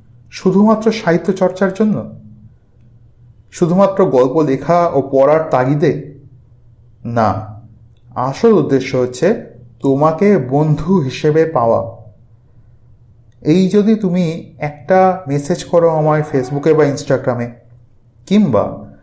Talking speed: 90 wpm